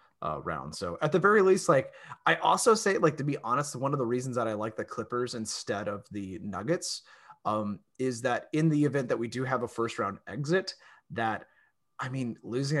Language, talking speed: English, 215 wpm